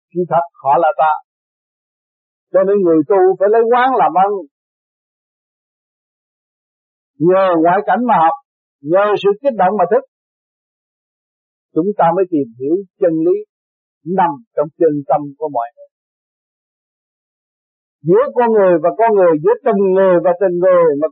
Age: 50-69